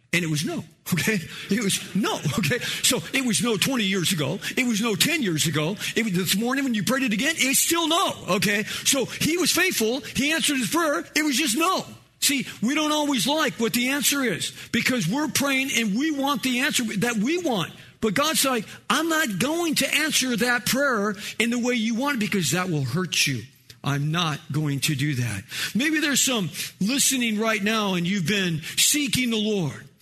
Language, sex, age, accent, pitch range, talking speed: English, male, 50-69, American, 150-245 Hz, 210 wpm